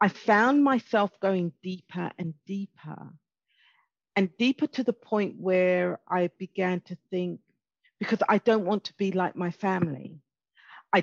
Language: English